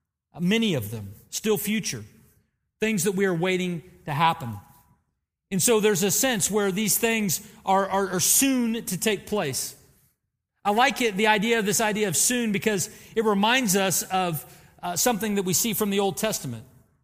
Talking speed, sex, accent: 180 wpm, male, American